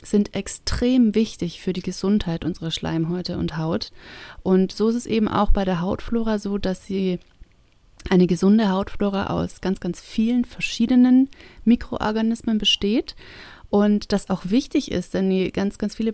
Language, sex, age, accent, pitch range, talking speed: German, female, 30-49, German, 180-215 Hz, 155 wpm